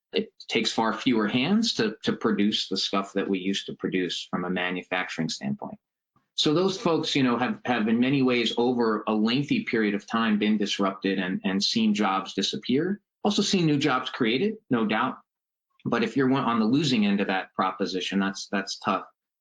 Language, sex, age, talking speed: English, male, 30-49, 190 wpm